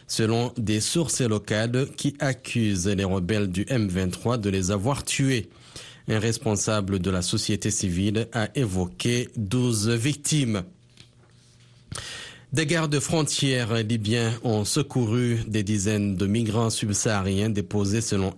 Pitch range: 100-125 Hz